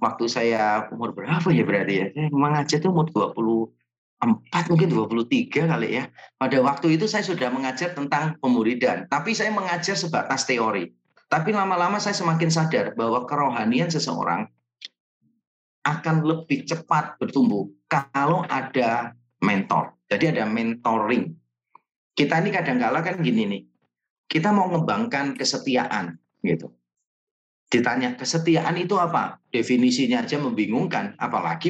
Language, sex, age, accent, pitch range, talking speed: Indonesian, male, 30-49, native, 115-175 Hz, 125 wpm